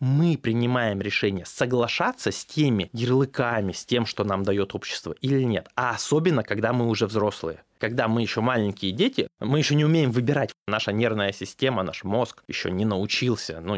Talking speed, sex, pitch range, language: 175 wpm, male, 95-125 Hz, Russian